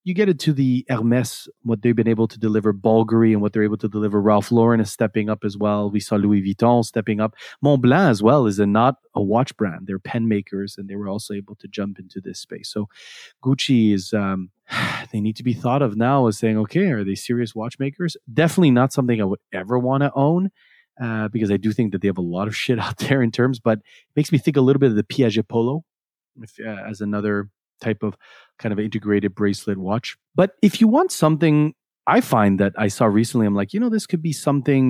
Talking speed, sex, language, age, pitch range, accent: 235 wpm, male, English, 30-49, 105-135 Hz, Canadian